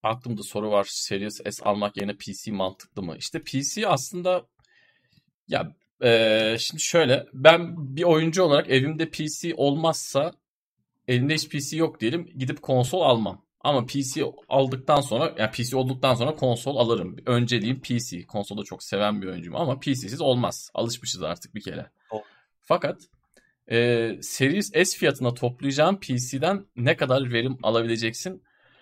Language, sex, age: Turkish, male, 40-59